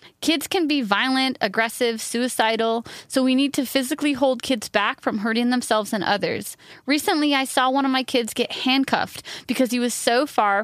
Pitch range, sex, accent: 220-275 Hz, female, American